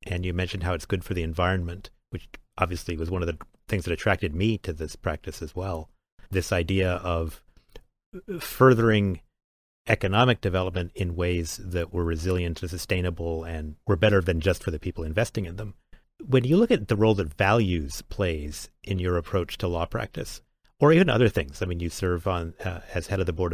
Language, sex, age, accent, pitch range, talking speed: English, male, 40-59, American, 85-105 Hz, 200 wpm